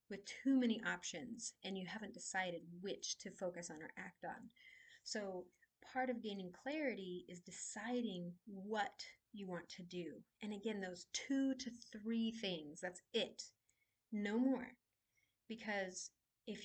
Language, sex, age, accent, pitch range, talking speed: English, female, 30-49, American, 190-250 Hz, 145 wpm